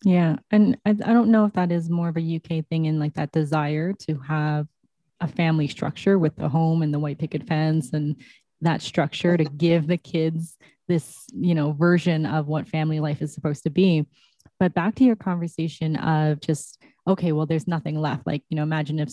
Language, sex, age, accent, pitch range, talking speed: English, female, 20-39, American, 150-165 Hz, 210 wpm